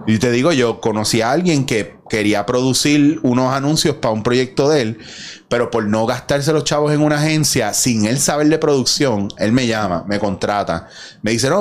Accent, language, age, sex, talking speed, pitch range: Venezuelan, Spanish, 30-49, male, 200 wpm, 115-155 Hz